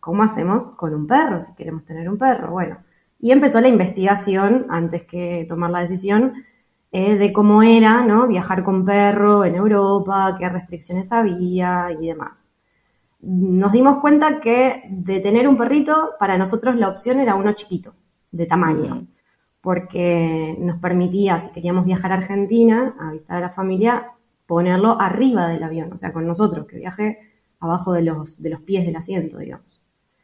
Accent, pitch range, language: Argentinian, 175-225 Hz, Spanish